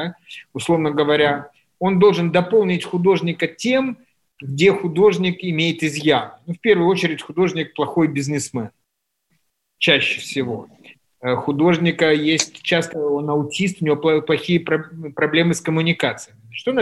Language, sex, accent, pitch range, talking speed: Russian, male, native, 145-175 Hz, 120 wpm